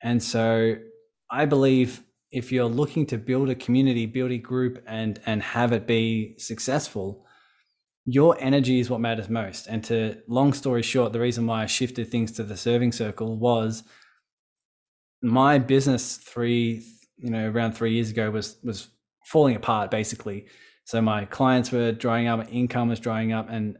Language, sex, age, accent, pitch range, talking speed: English, male, 20-39, Australian, 110-125 Hz, 170 wpm